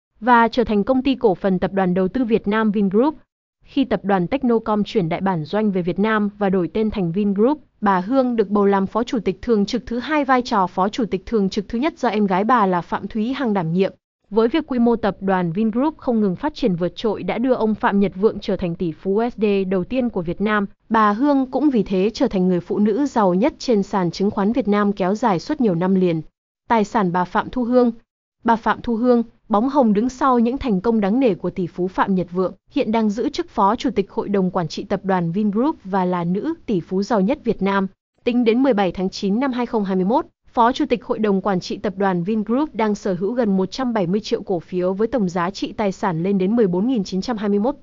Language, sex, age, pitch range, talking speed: Vietnamese, female, 20-39, 195-240 Hz, 245 wpm